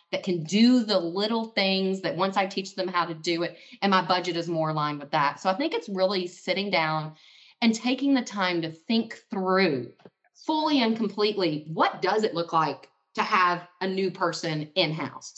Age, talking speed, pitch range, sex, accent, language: 30-49, 200 wpm, 180-230 Hz, female, American, English